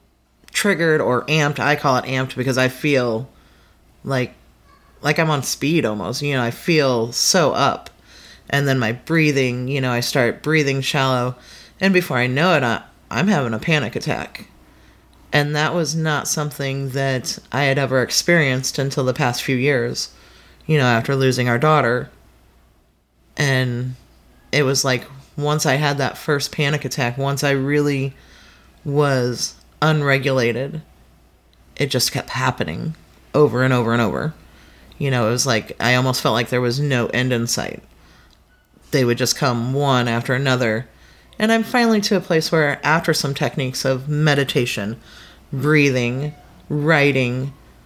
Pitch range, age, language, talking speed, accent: 120-150 Hz, 30-49, English, 155 wpm, American